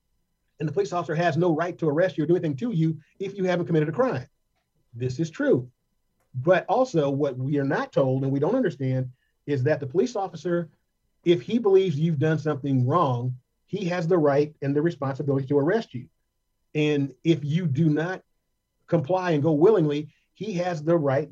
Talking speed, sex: 195 wpm, male